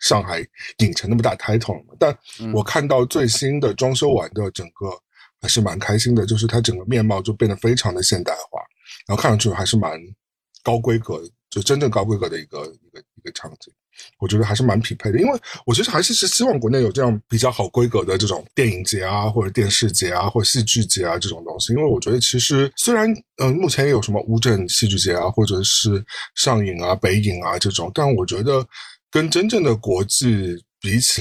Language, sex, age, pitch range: Chinese, male, 50-69, 105-130 Hz